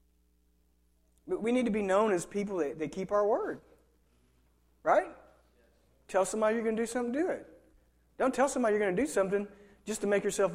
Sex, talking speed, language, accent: male, 200 wpm, English, American